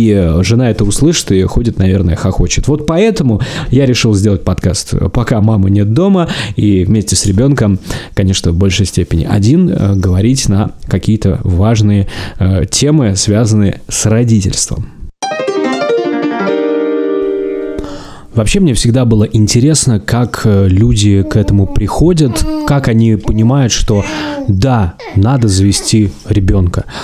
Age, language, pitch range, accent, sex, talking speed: 20-39, Russian, 100-120 Hz, native, male, 120 wpm